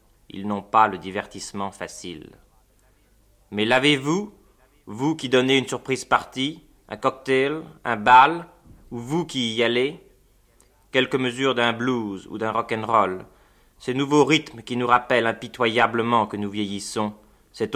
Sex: male